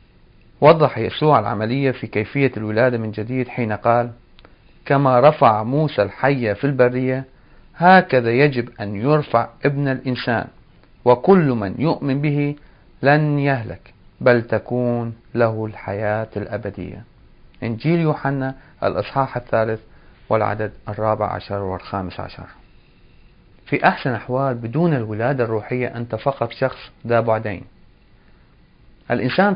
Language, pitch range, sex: Arabic, 110-140 Hz, male